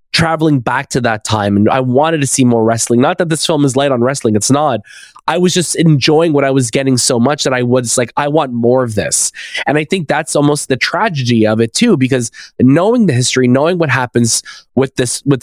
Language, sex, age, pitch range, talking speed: English, male, 20-39, 120-145 Hz, 235 wpm